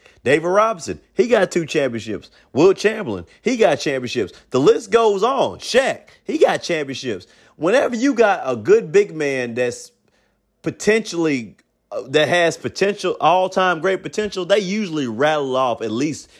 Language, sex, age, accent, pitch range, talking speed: English, male, 30-49, American, 145-210 Hz, 155 wpm